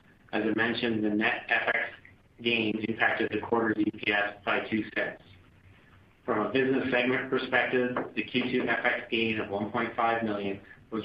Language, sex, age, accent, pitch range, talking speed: English, male, 50-69, American, 100-120 Hz, 145 wpm